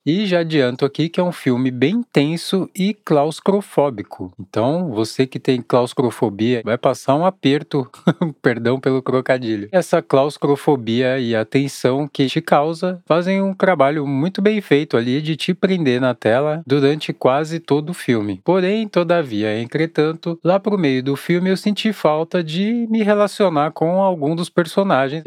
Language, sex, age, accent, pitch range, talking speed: Portuguese, male, 20-39, Brazilian, 130-170 Hz, 160 wpm